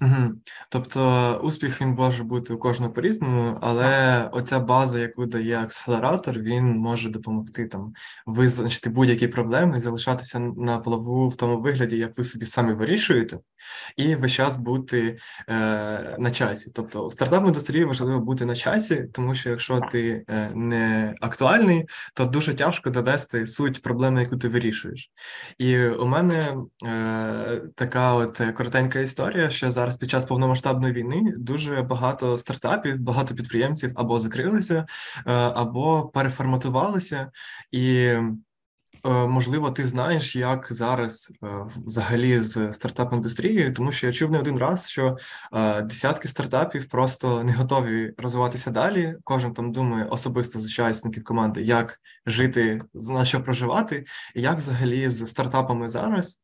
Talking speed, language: 135 wpm, Ukrainian